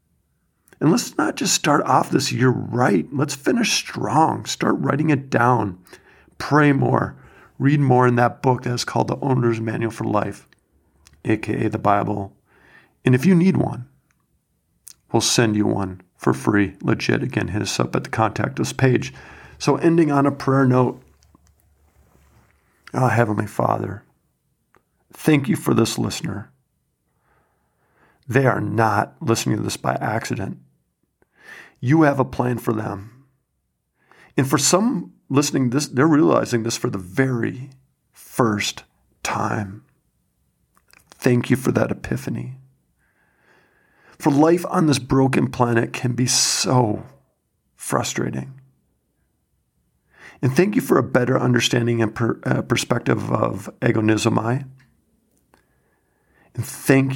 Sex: male